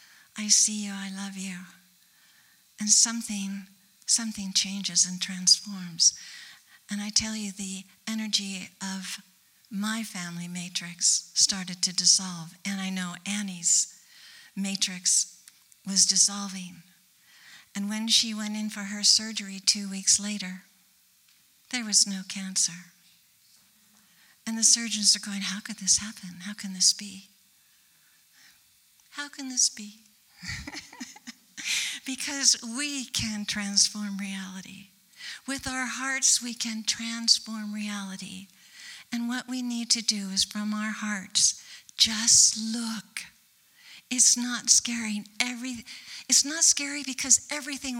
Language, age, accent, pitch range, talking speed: English, 60-79, American, 190-225 Hz, 120 wpm